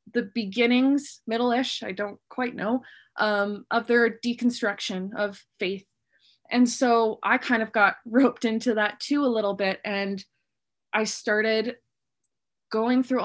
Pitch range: 210-245 Hz